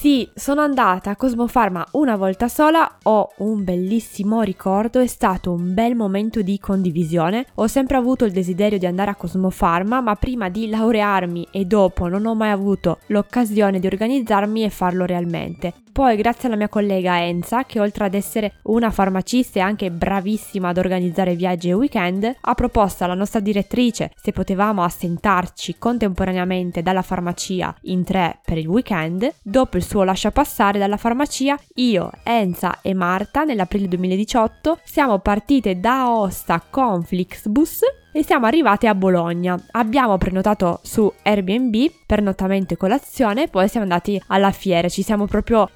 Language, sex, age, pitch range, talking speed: Italian, female, 20-39, 185-230 Hz, 160 wpm